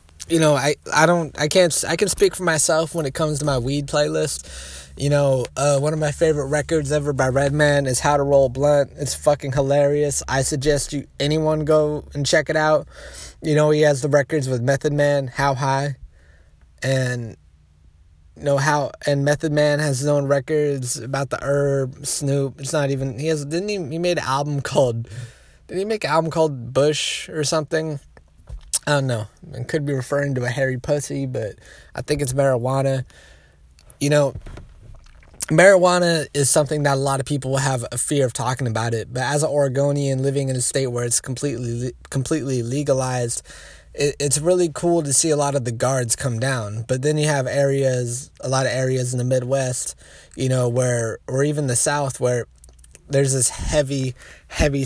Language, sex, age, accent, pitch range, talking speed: English, male, 20-39, American, 125-150 Hz, 195 wpm